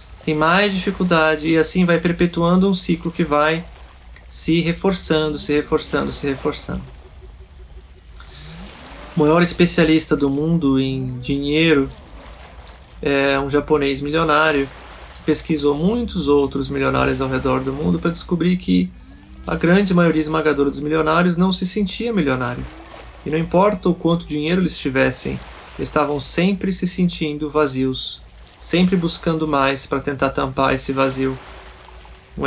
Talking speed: 135 wpm